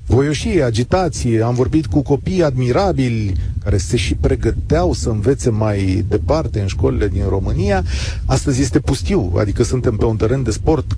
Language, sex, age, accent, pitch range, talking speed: Romanian, male, 40-59, native, 100-130 Hz, 160 wpm